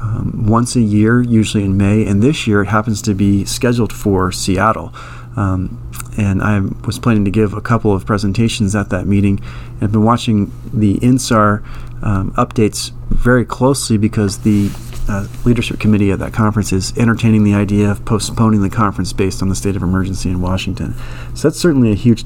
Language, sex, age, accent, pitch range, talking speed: English, male, 40-59, American, 100-120 Hz, 185 wpm